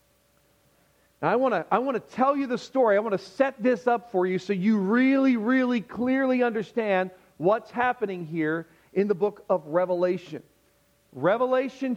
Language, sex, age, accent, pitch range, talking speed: English, male, 40-59, American, 200-255 Hz, 160 wpm